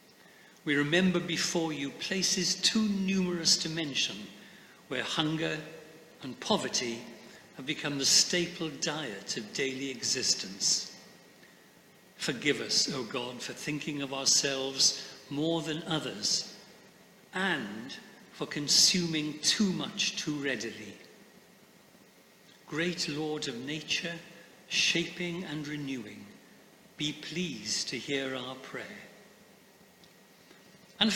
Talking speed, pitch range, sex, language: 100 wpm, 150-210 Hz, male, English